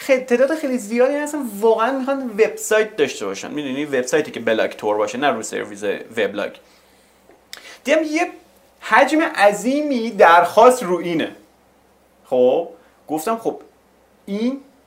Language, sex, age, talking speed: Persian, male, 30-49, 130 wpm